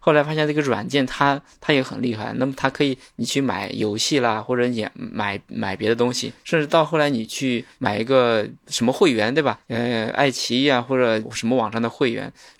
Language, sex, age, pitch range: Chinese, male, 20-39, 110-140 Hz